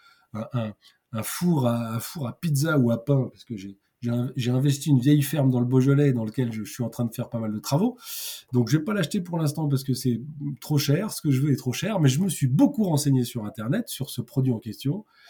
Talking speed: 265 wpm